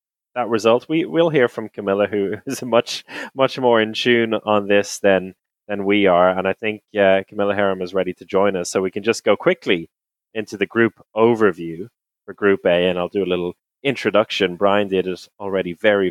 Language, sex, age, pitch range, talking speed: English, male, 20-39, 100-125 Hz, 205 wpm